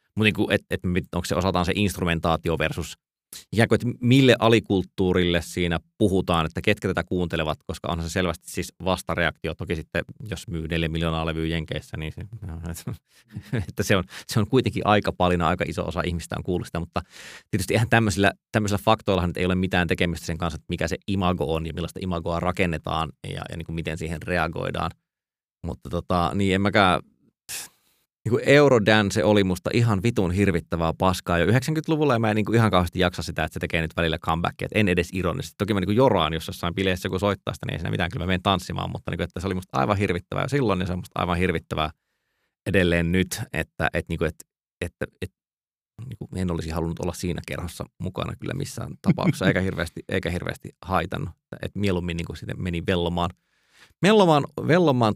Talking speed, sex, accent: 185 wpm, male, native